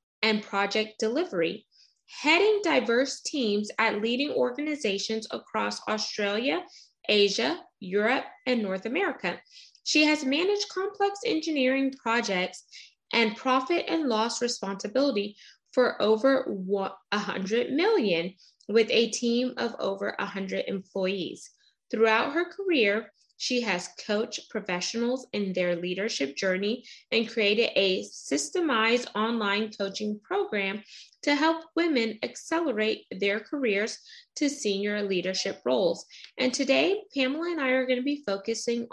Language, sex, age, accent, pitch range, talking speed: English, female, 20-39, American, 200-275 Hz, 115 wpm